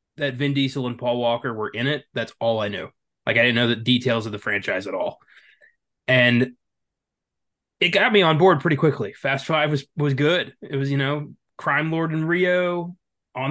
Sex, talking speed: male, 205 wpm